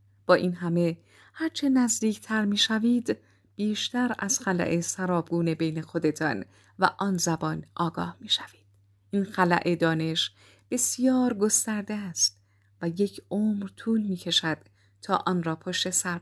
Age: 30-49